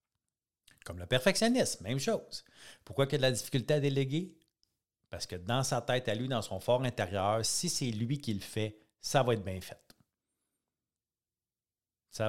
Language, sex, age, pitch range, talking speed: French, male, 50-69, 110-140 Hz, 180 wpm